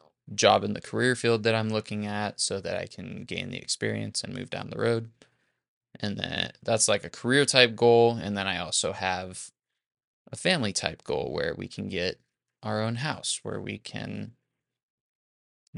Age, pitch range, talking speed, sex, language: 20-39, 100-115 Hz, 185 wpm, male, English